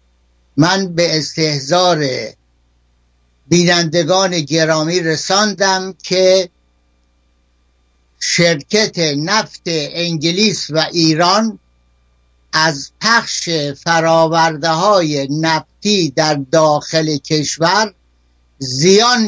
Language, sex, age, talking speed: Persian, male, 60-79, 65 wpm